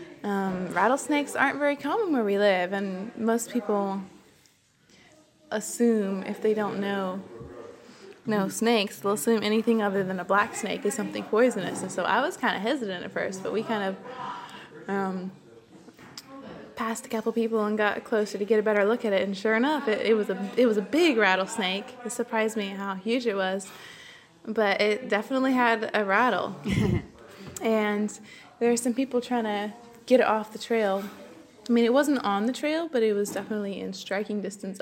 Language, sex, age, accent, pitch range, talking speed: English, female, 20-39, American, 200-235 Hz, 180 wpm